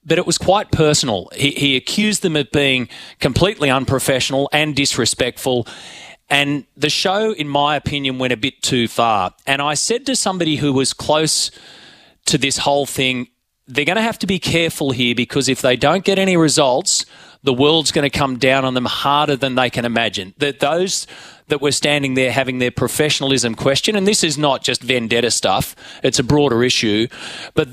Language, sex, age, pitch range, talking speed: English, male, 30-49, 130-150 Hz, 190 wpm